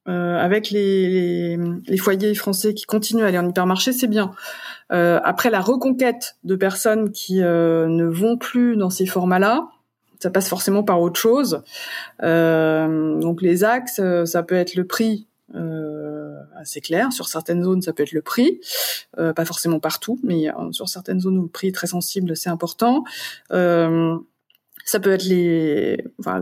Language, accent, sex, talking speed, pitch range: French, French, female, 170 wpm, 170-210 Hz